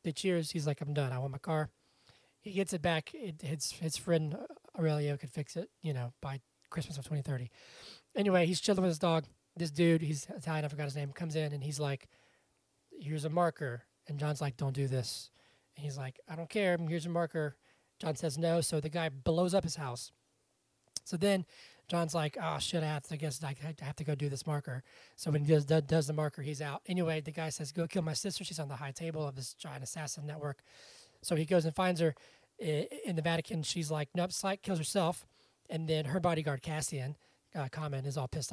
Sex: male